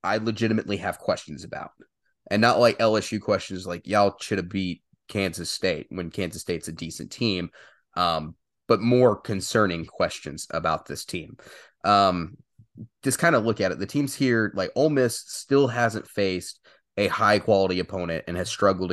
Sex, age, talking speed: male, 20-39, 170 wpm